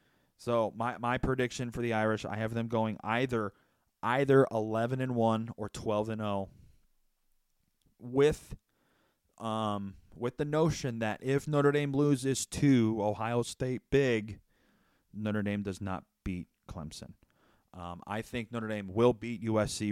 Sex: male